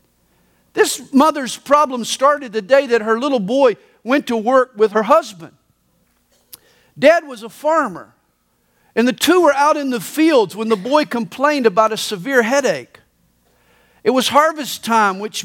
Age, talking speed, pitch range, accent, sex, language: 50-69, 160 wpm, 220-295 Hz, American, male, English